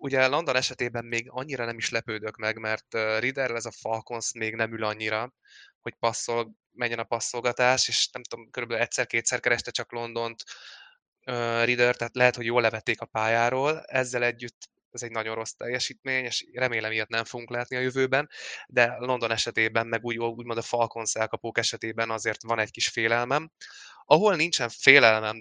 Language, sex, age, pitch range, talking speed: Hungarian, male, 20-39, 110-125 Hz, 175 wpm